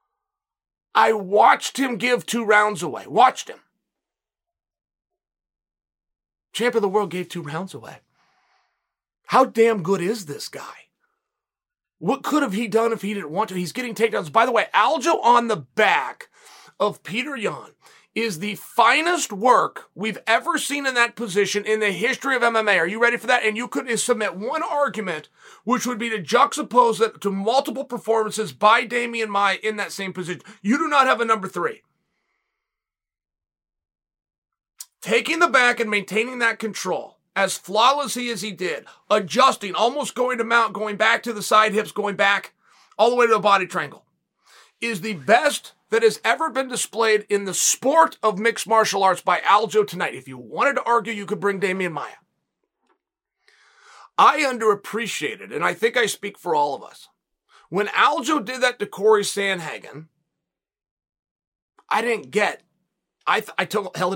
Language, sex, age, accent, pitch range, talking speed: English, male, 30-49, American, 200-250 Hz, 170 wpm